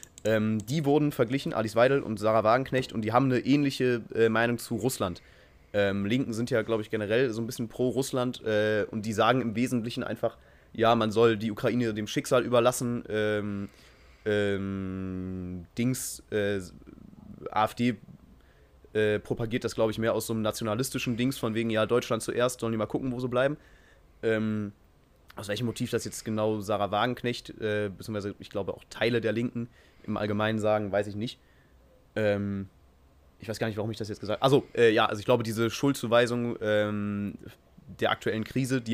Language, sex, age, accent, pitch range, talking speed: German, male, 20-39, German, 105-120 Hz, 180 wpm